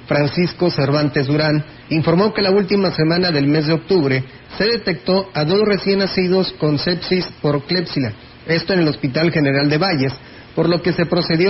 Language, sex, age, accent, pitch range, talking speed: Spanish, male, 40-59, Mexican, 140-180 Hz, 175 wpm